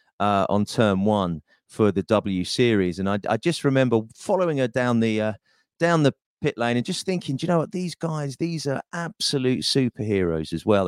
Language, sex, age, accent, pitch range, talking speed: English, male, 40-59, British, 95-140 Hz, 200 wpm